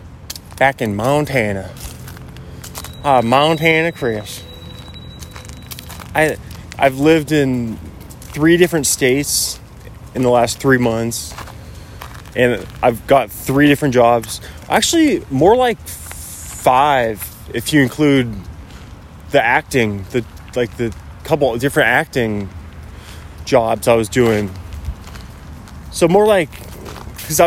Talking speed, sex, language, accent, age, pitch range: 105 wpm, male, English, American, 20-39, 100-140 Hz